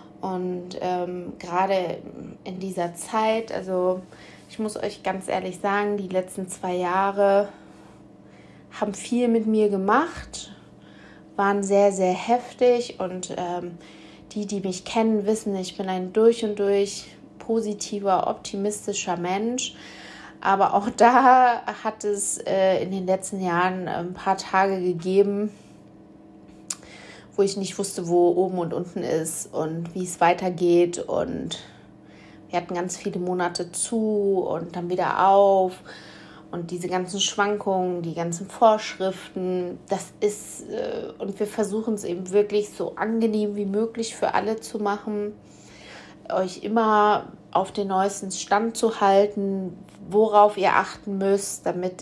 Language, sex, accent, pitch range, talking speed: German, female, German, 180-210 Hz, 135 wpm